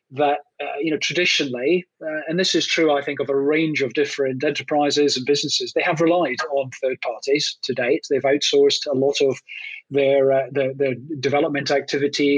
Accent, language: British, English